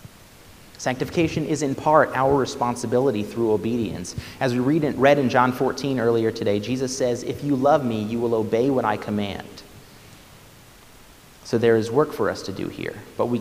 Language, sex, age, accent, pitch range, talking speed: English, male, 30-49, American, 105-135 Hz, 185 wpm